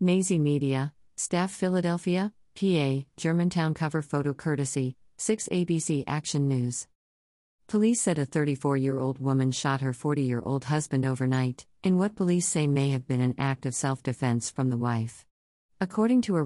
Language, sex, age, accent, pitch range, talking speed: English, female, 50-69, American, 130-160 Hz, 145 wpm